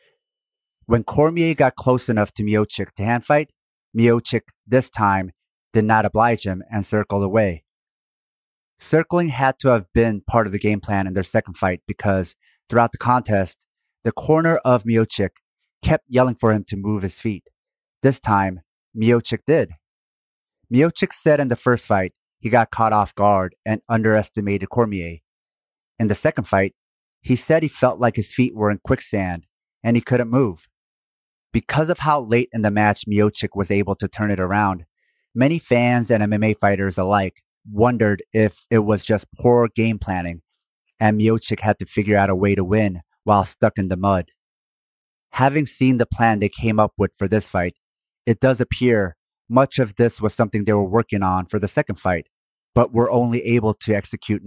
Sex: male